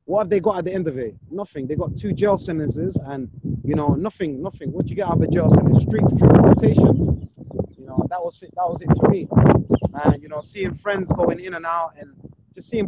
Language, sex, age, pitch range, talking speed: English, male, 20-39, 140-190 Hz, 245 wpm